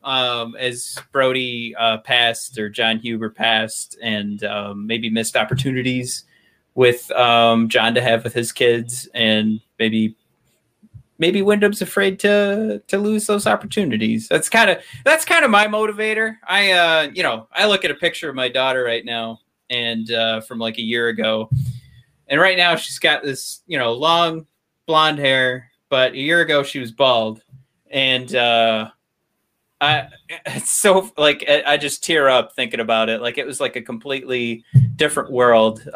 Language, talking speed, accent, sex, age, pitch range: English, 165 wpm, American, male, 30-49, 115-150 Hz